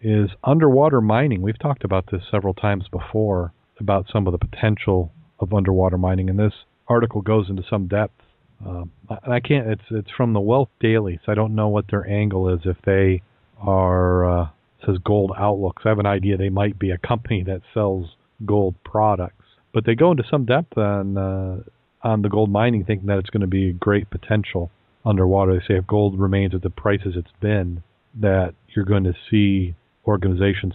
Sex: male